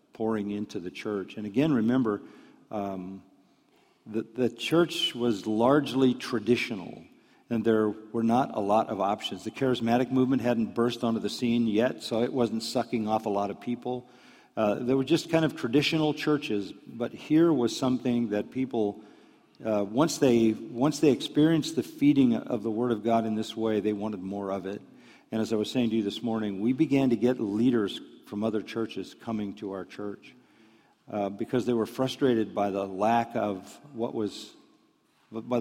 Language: English